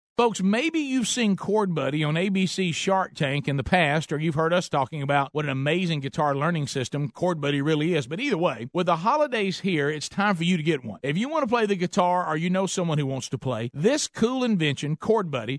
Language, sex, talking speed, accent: English, male, 245 wpm, American